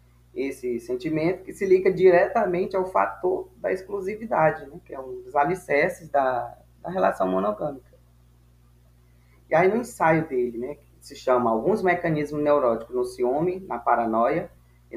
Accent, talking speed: Brazilian, 150 wpm